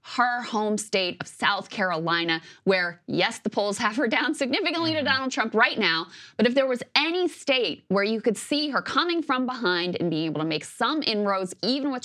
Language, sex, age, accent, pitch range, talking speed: English, female, 20-39, American, 170-245 Hz, 210 wpm